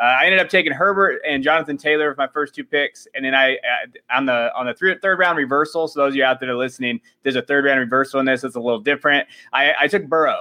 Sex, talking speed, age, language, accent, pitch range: male, 290 wpm, 20-39, English, American, 130-175 Hz